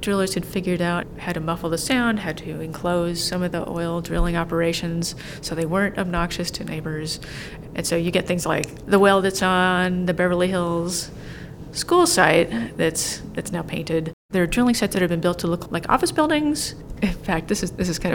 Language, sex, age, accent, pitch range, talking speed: English, female, 30-49, American, 170-190 Hz, 210 wpm